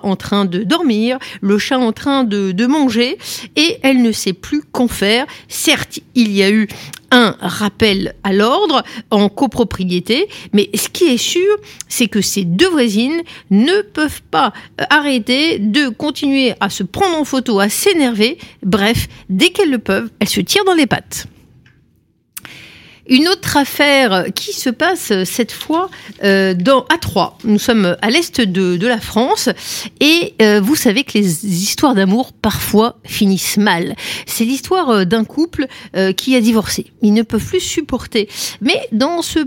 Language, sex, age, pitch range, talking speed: French, female, 50-69, 205-290 Hz, 160 wpm